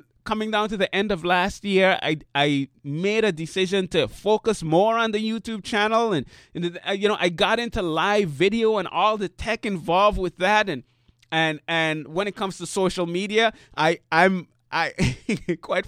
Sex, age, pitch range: male, 30-49, 155-205 Hz